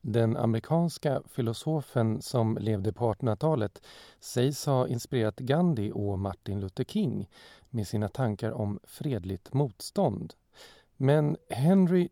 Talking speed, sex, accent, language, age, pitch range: 115 wpm, male, native, Swedish, 40-59, 110-160 Hz